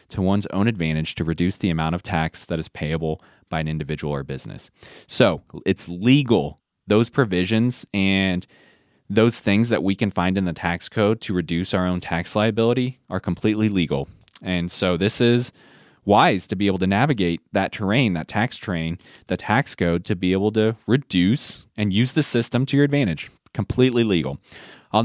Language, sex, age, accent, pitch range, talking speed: English, male, 20-39, American, 90-115 Hz, 180 wpm